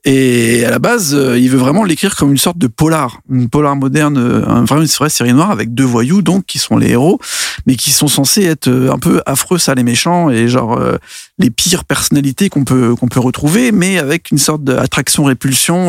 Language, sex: French, male